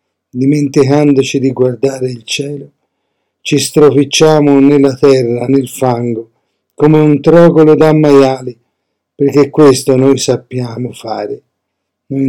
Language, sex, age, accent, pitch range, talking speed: Italian, male, 50-69, native, 120-145 Hz, 105 wpm